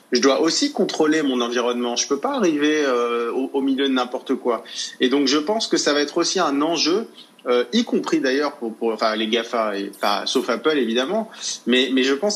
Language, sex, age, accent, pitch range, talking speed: French, male, 30-49, French, 125-175 Hz, 225 wpm